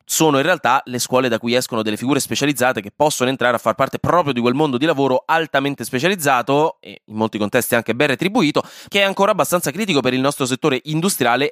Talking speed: 220 wpm